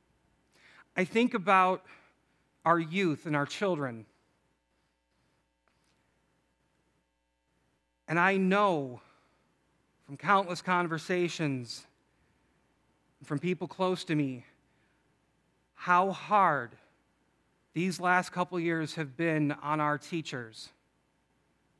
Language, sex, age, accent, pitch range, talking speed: English, male, 40-59, American, 135-175 Hz, 85 wpm